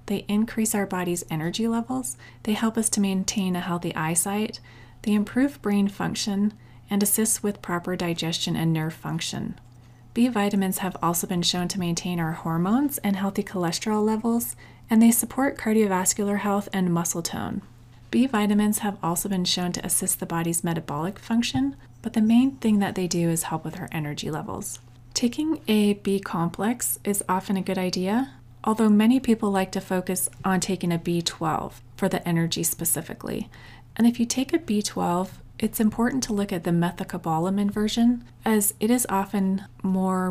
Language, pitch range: English, 170-215 Hz